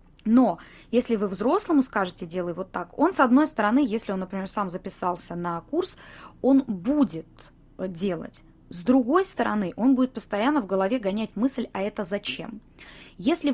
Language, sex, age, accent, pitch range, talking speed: Russian, female, 20-39, native, 195-255 Hz, 160 wpm